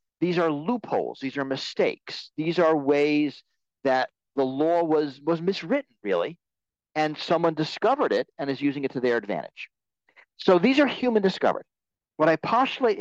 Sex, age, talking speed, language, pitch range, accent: male, 50-69, 160 wpm, English, 150-220 Hz, American